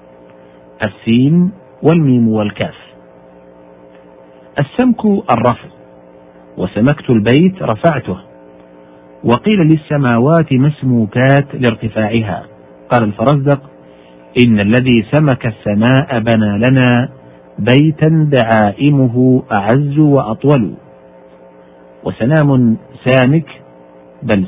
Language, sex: Arabic, male